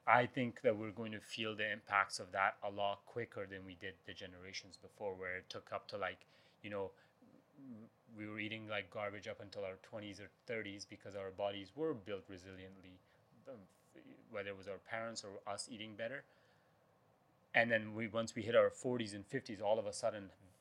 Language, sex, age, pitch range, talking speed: English, male, 30-49, 95-115 Hz, 200 wpm